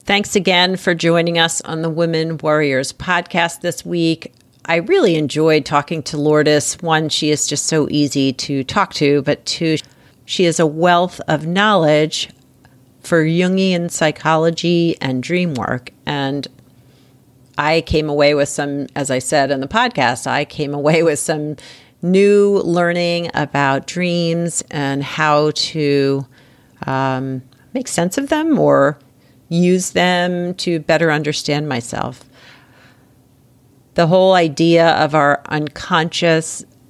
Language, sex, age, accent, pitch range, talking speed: English, female, 40-59, American, 140-170 Hz, 135 wpm